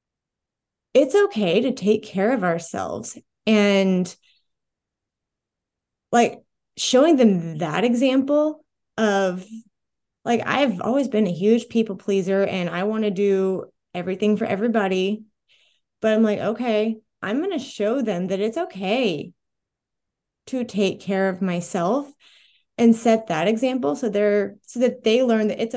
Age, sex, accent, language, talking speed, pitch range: 20-39, female, American, English, 135 wpm, 195-235 Hz